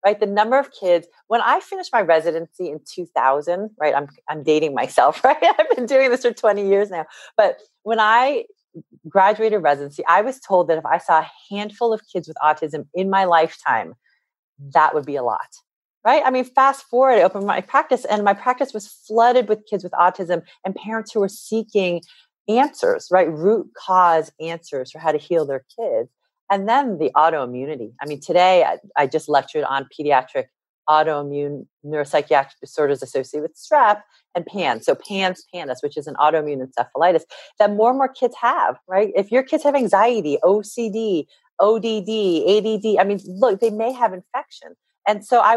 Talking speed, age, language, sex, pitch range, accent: 185 wpm, 30-49, English, female, 155-230 Hz, American